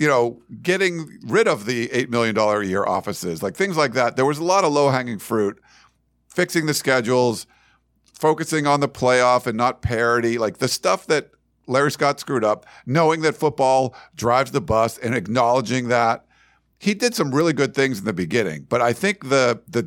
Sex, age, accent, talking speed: male, 50-69, American, 195 wpm